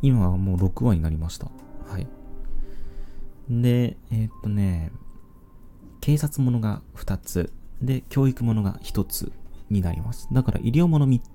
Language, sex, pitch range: Japanese, male, 90-115 Hz